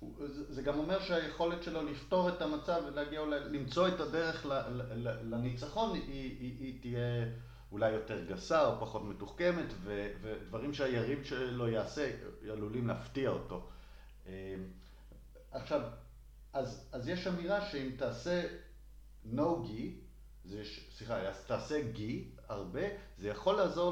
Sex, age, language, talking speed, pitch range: male, 50-69, English, 115 wpm, 100-145 Hz